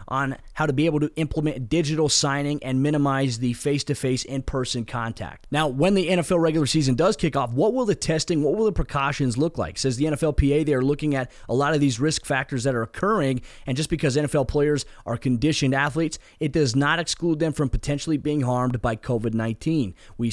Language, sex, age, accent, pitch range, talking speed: English, male, 20-39, American, 130-150 Hz, 205 wpm